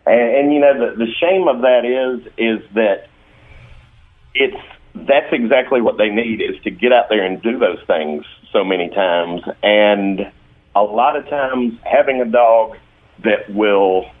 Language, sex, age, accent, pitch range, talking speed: English, male, 50-69, American, 95-120 Hz, 170 wpm